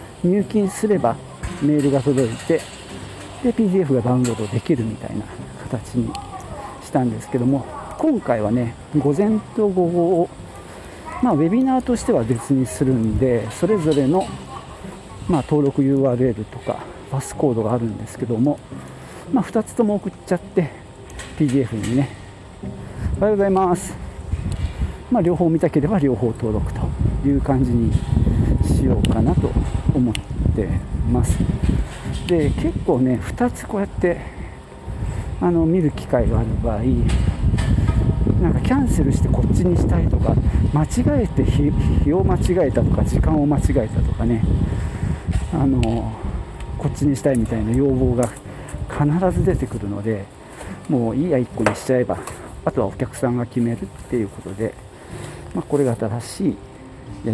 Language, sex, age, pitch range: Japanese, male, 50-69, 105-145 Hz